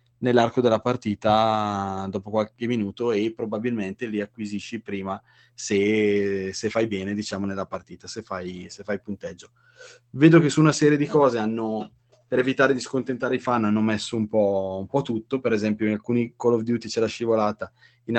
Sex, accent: male, native